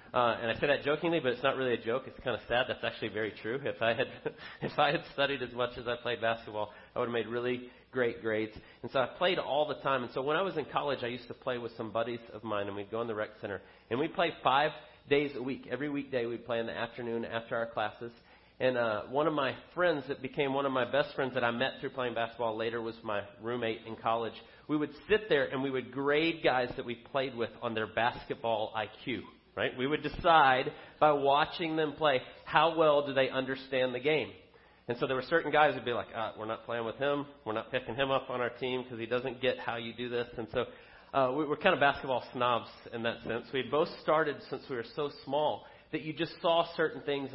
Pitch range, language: 115-140 Hz, English